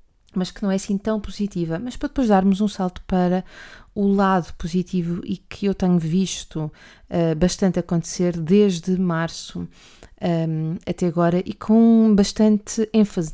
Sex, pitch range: female, 170-195 Hz